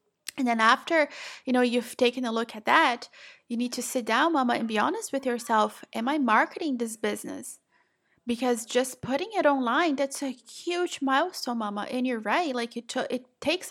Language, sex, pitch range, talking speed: English, female, 230-275 Hz, 195 wpm